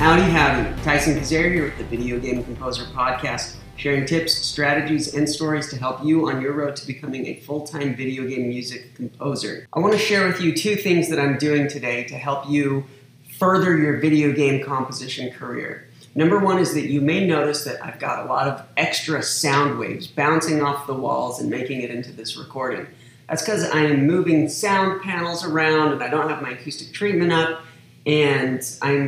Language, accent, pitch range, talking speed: English, American, 135-160 Hz, 195 wpm